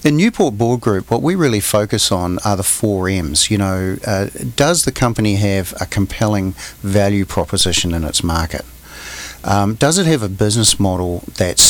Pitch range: 90-110 Hz